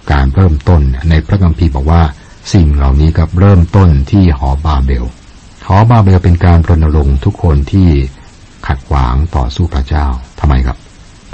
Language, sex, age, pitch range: Thai, male, 60-79, 70-95 Hz